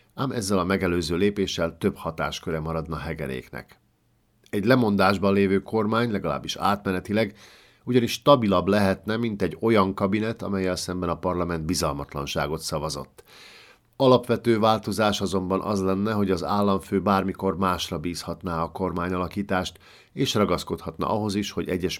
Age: 50-69